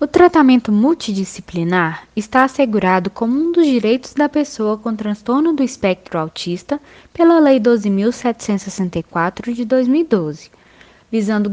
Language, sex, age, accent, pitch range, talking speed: Portuguese, female, 10-29, Brazilian, 190-275 Hz, 115 wpm